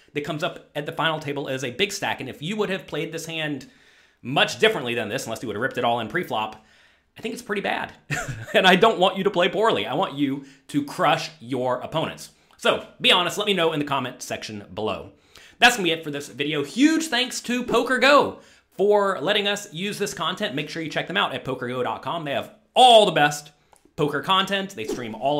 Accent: American